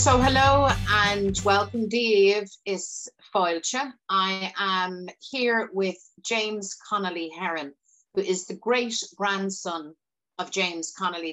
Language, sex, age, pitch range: English, female, 30-49, 175-210 Hz